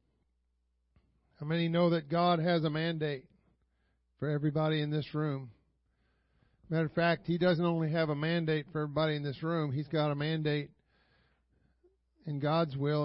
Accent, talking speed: American, 155 wpm